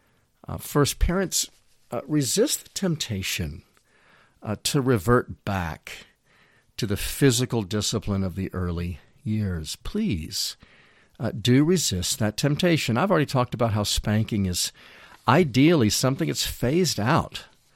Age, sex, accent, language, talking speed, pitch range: 50-69, male, American, English, 125 wpm, 100-135 Hz